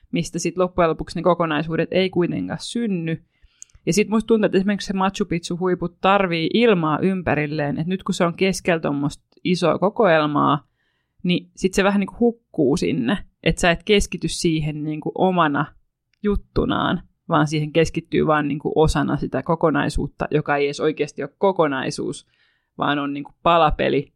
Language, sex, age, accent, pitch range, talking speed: Finnish, female, 20-39, native, 150-185 Hz, 155 wpm